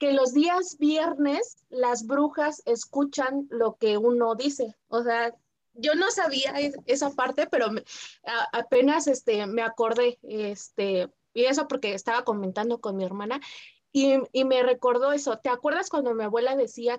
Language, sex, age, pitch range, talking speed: Spanish, female, 20-39, 230-280 Hz, 145 wpm